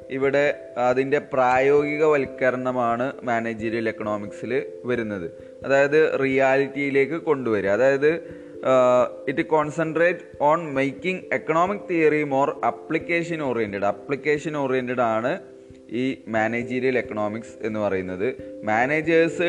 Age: 20-39